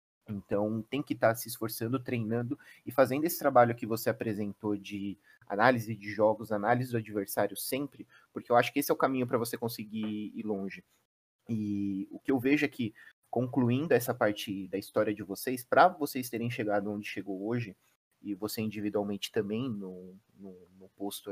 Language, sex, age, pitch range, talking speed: Portuguese, male, 30-49, 100-120 Hz, 185 wpm